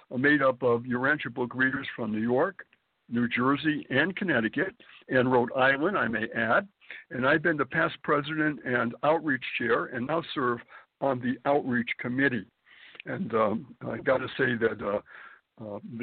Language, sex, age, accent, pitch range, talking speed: English, male, 60-79, American, 125-155 Hz, 155 wpm